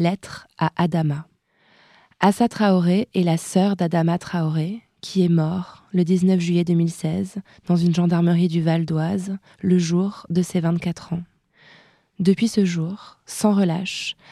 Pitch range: 170-190 Hz